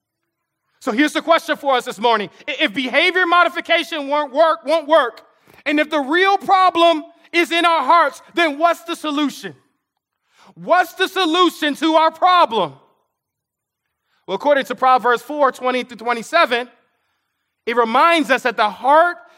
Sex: male